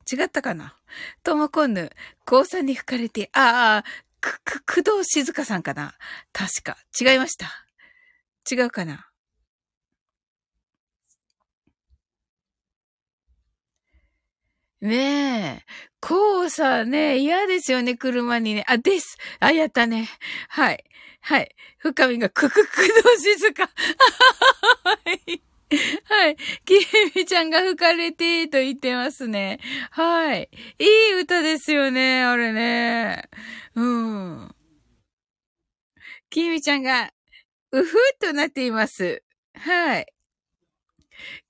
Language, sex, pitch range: Japanese, female, 230-345 Hz